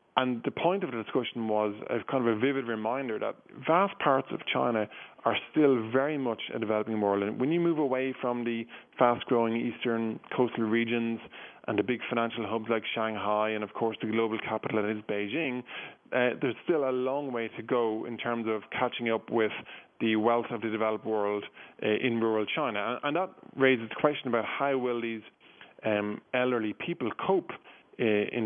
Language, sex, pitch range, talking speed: English, male, 105-120 Hz, 190 wpm